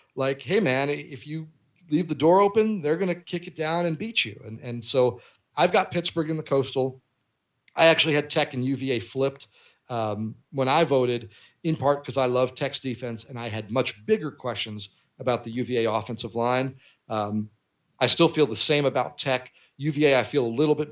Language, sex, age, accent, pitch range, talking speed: English, male, 40-59, American, 110-140 Hz, 200 wpm